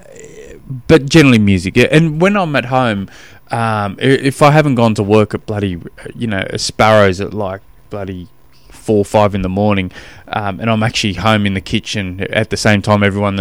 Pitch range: 100-155 Hz